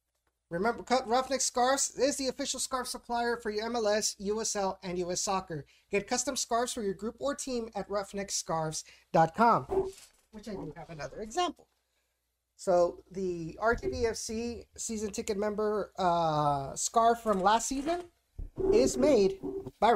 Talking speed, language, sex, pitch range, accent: 135 wpm, English, male, 190-235 Hz, American